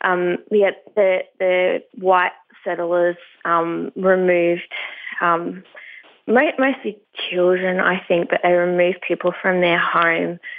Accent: Australian